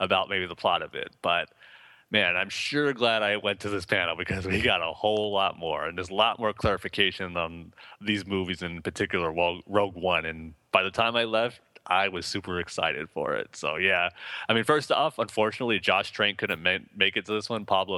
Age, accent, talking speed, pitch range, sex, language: 30-49, American, 215 wpm, 90-115 Hz, male, English